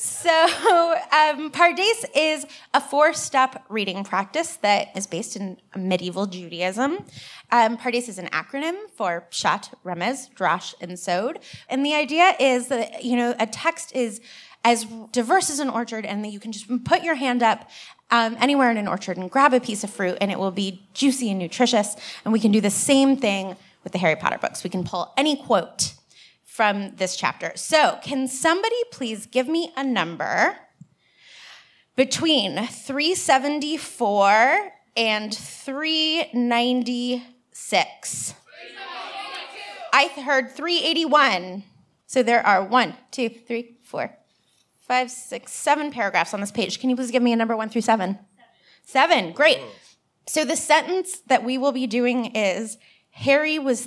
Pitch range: 210-290 Hz